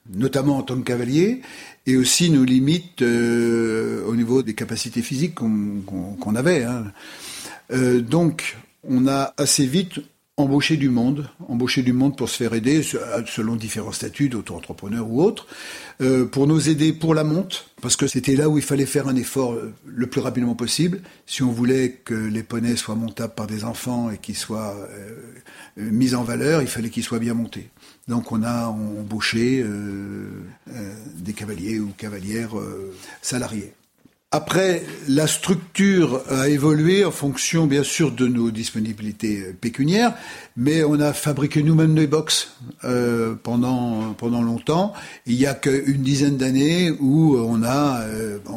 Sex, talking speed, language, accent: male, 165 wpm, French, French